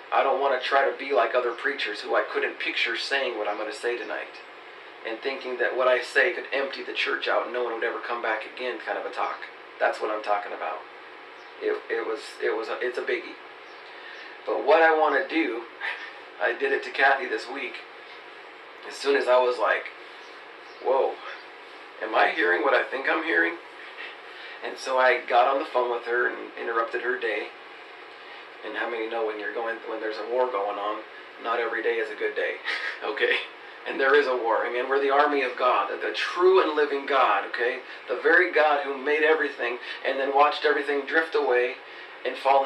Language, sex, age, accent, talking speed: English, male, 40-59, American, 215 wpm